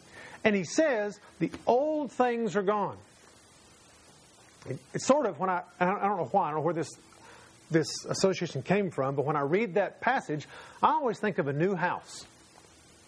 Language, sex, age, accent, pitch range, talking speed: English, male, 40-59, American, 160-210 Hz, 180 wpm